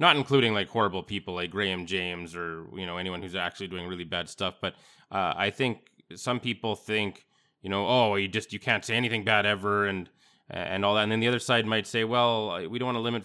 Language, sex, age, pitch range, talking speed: English, male, 20-39, 100-120 Hz, 240 wpm